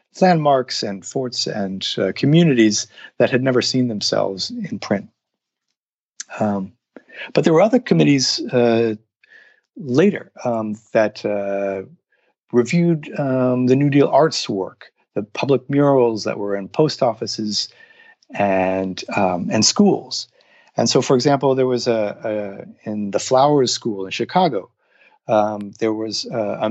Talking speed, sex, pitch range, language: 135 wpm, male, 105-140 Hz, English